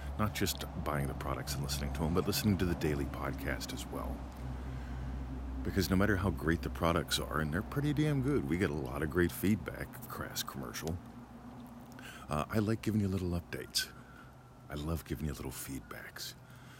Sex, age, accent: male, 50-69, American